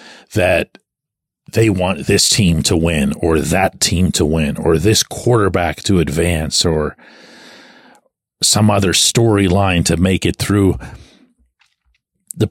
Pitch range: 95-130 Hz